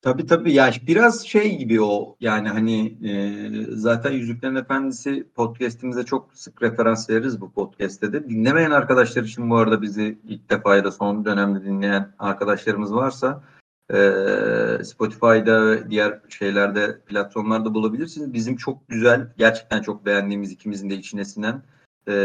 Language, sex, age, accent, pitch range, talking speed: Turkish, male, 40-59, native, 105-130 Hz, 145 wpm